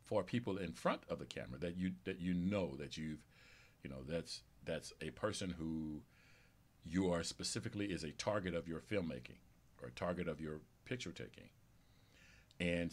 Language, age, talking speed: English, 50-69, 175 wpm